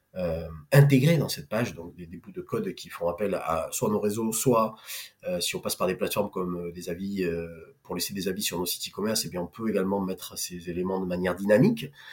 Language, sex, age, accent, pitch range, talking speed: French, male, 30-49, French, 110-145 Hz, 250 wpm